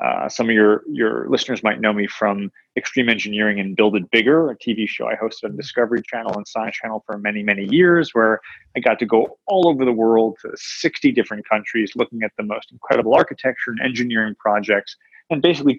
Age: 30-49